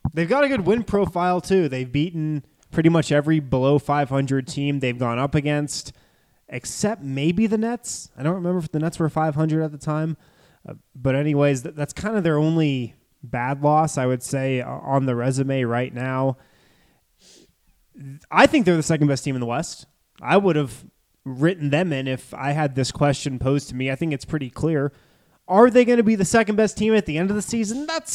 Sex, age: male, 20-39